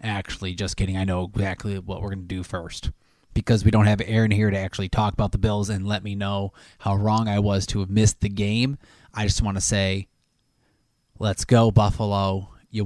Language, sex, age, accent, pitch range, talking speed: English, male, 20-39, American, 100-115 Hz, 215 wpm